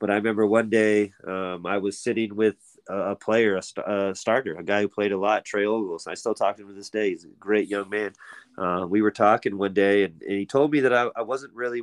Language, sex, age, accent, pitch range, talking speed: English, male, 30-49, American, 95-110 Hz, 270 wpm